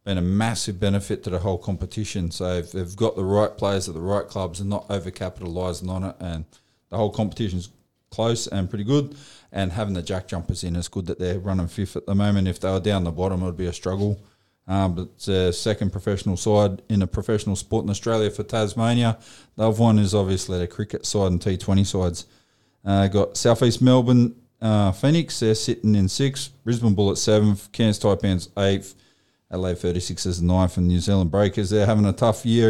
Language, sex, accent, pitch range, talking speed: English, male, Australian, 95-110 Hz, 210 wpm